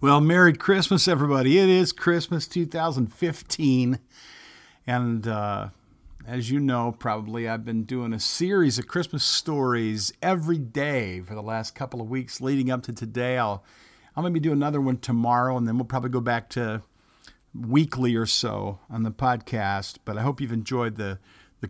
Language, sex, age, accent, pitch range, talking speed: English, male, 50-69, American, 110-145 Hz, 175 wpm